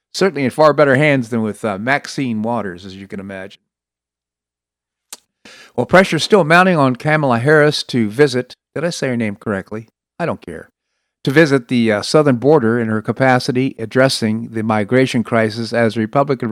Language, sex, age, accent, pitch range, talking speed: English, male, 50-69, American, 110-145 Hz, 180 wpm